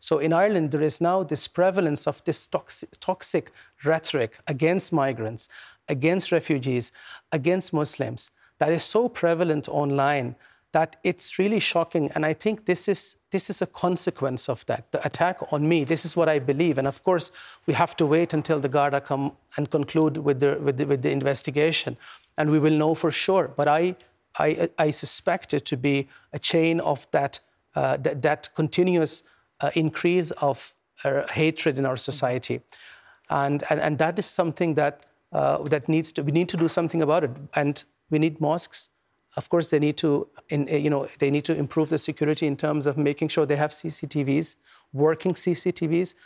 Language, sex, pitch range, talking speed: English, male, 145-170 Hz, 190 wpm